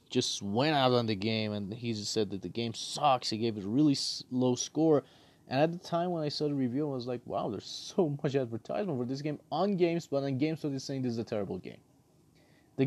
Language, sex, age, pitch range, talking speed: English, male, 30-49, 115-155 Hz, 245 wpm